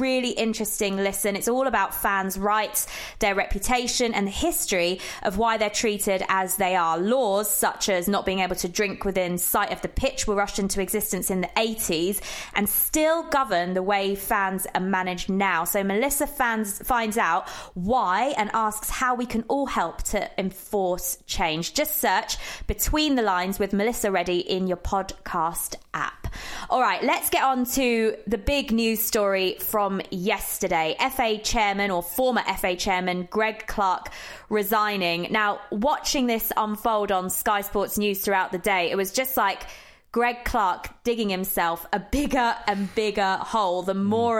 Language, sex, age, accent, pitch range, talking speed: English, female, 20-39, British, 190-225 Hz, 165 wpm